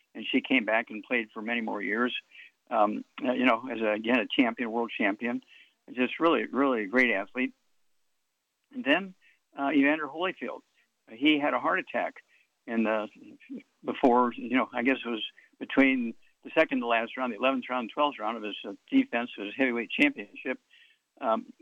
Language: English